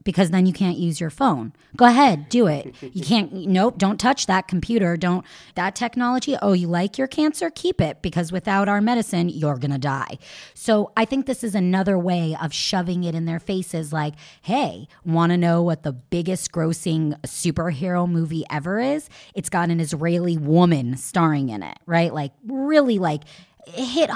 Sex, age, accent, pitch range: female, 30-49, American, 160-210 Hz